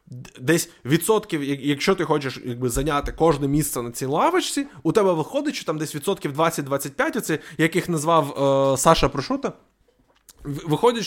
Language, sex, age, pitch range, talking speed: Ukrainian, male, 20-39, 130-180 Hz, 135 wpm